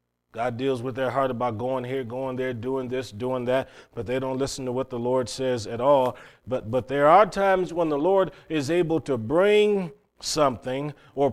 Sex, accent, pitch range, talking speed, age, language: male, American, 95-150 Hz, 205 wpm, 40-59, English